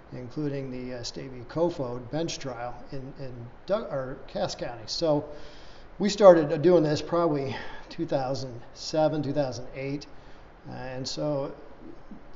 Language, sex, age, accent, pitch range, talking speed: English, male, 40-59, American, 130-150 Hz, 120 wpm